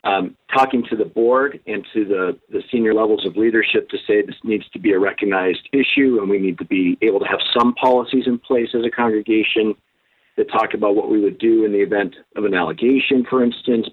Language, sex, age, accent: English, male, 50-69, American